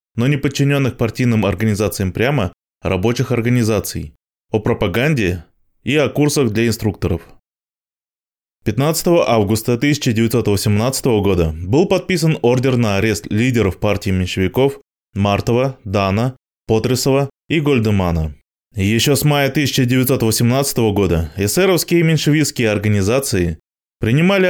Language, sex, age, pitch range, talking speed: Russian, male, 20-39, 100-140 Hz, 105 wpm